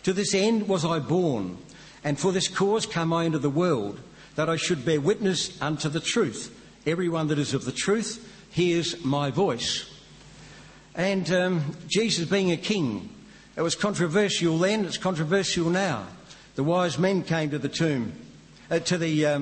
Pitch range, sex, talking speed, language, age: 140-190 Hz, male, 175 wpm, English, 60-79